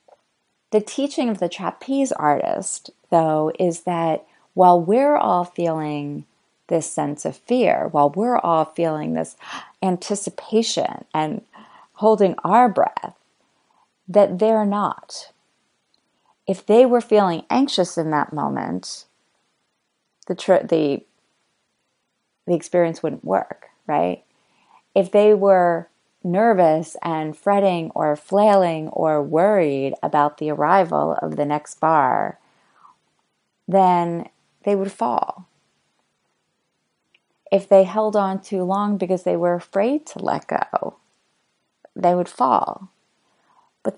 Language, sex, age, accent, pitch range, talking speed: English, female, 30-49, American, 165-215 Hz, 115 wpm